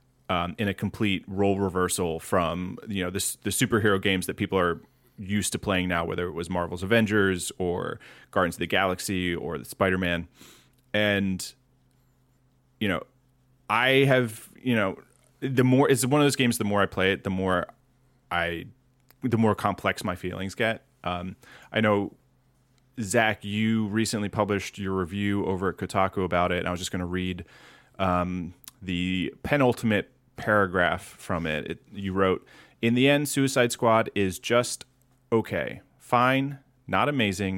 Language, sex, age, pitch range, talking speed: English, male, 30-49, 95-125 Hz, 165 wpm